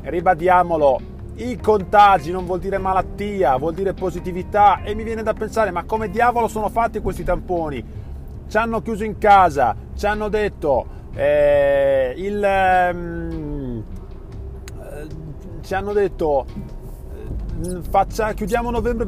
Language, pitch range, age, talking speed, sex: Italian, 120-195 Hz, 30-49, 125 wpm, male